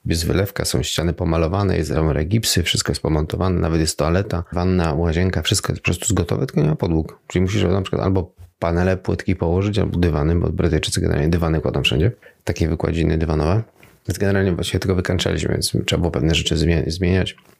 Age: 30-49